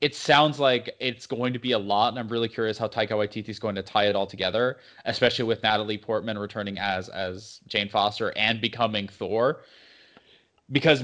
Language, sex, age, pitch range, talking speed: English, male, 20-39, 110-135 Hz, 195 wpm